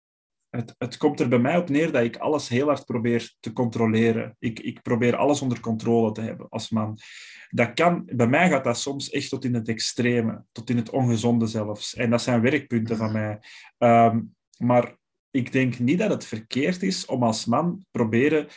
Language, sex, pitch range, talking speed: Dutch, male, 115-135 Hz, 190 wpm